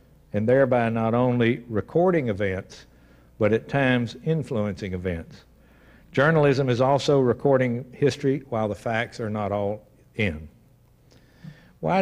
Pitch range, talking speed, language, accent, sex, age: 100-130 Hz, 120 wpm, English, American, male, 60-79